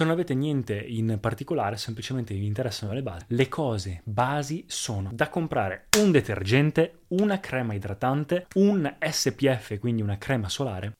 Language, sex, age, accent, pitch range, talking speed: Italian, male, 20-39, native, 105-135 Hz, 145 wpm